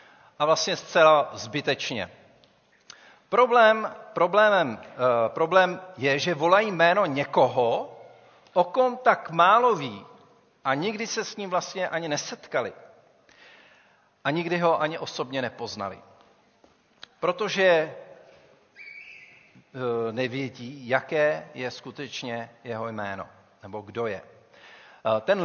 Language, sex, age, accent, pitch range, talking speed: Czech, male, 50-69, native, 130-180 Hz, 100 wpm